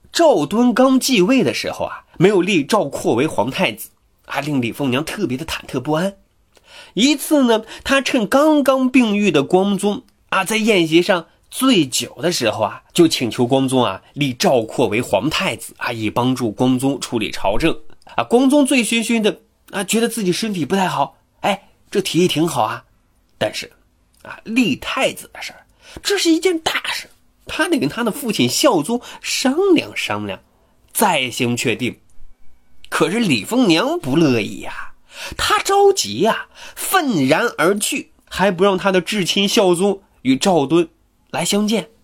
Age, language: 30-49, Chinese